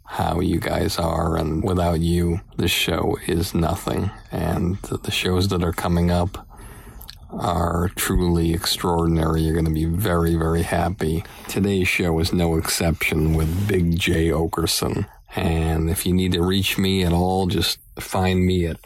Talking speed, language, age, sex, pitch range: 160 wpm, English, 50-69, male, 85-90 Hz